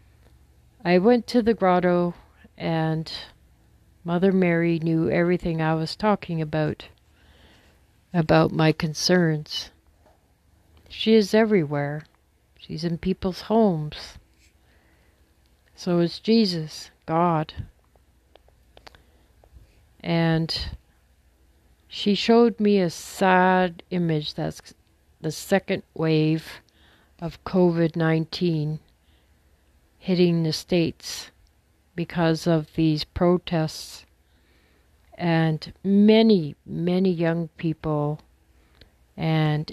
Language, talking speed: English, 80 wpm